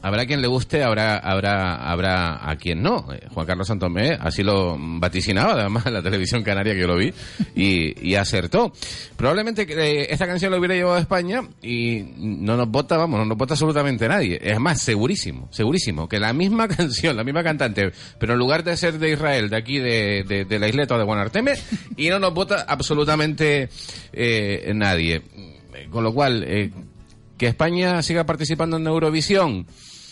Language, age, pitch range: Spanish, 30-49, 95-145 Hz